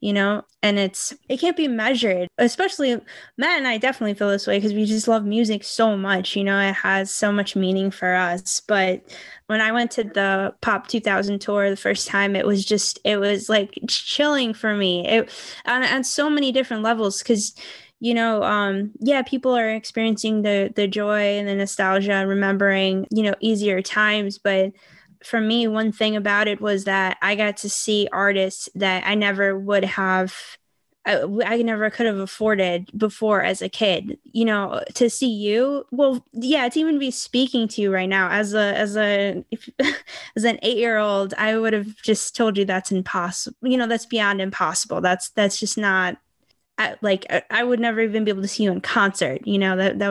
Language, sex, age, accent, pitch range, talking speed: English, female, 10-29, American, 195-230 Hz, 195 wpm